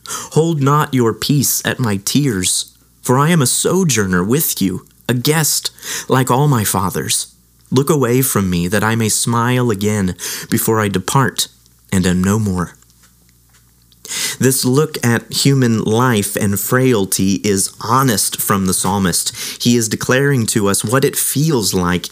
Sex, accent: male, American